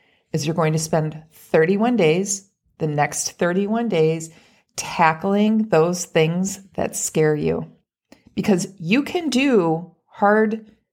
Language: English